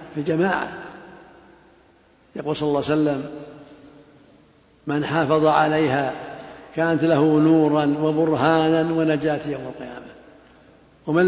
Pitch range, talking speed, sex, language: 150-180 Hz, 95 wpm, male, Arabic